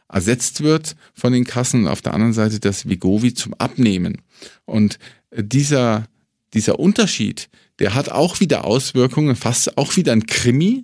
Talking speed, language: 155 wpm, German